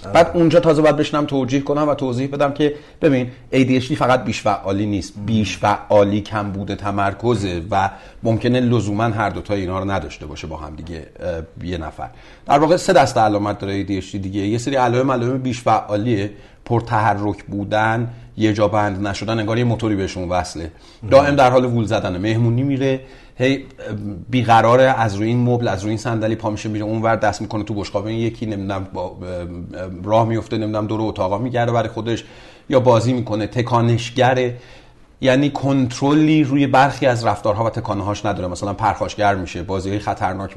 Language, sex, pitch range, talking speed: Persian, male, 100-125 Hz, 175 wpm